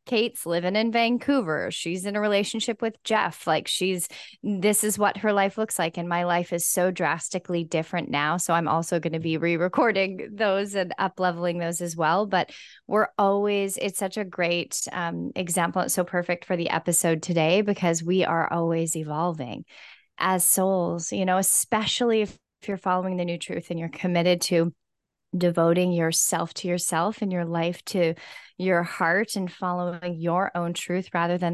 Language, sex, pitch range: English, female, 175-210 Hz